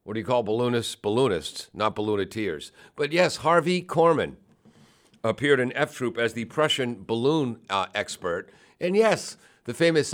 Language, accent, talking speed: English, American, 155 wpm